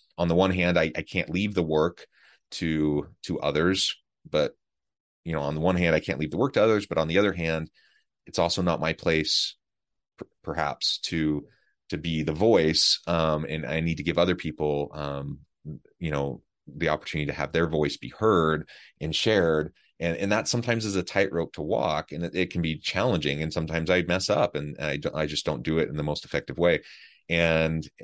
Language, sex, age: English, male, 30-49